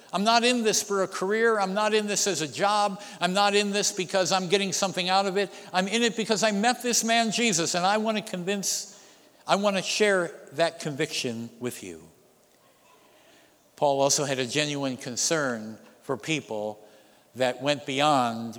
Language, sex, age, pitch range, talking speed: English, male, 60-79, 125-195 Hz, 185 wpm